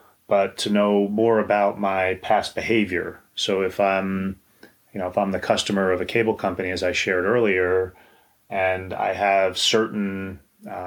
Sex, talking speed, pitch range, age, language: male, 165 wpm, 95-100 Hz, 30-49, English